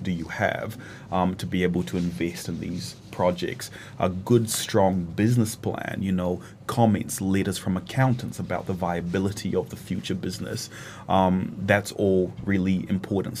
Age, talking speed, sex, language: 30-49, 155 wpm, male, English